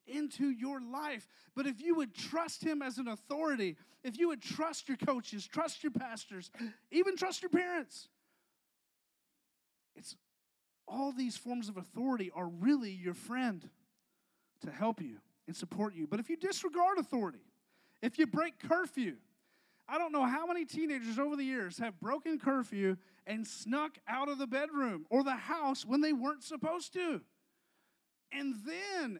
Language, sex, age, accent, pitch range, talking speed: English, male, 30-49, American, 230-315 Hz, 160 wpm